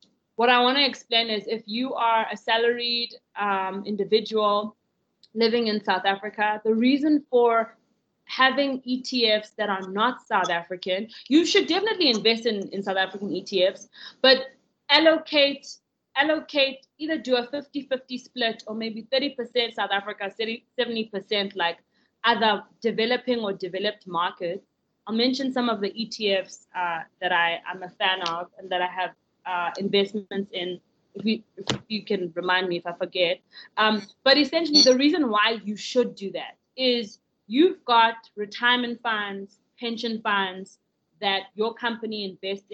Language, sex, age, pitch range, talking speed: English, female, 20-39, 195-255 Hz, 150 wpm